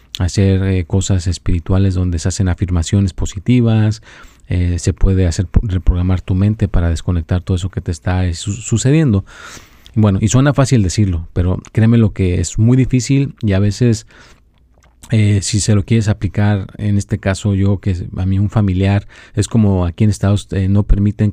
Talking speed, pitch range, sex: 170 wpm, 95-110 Hz, male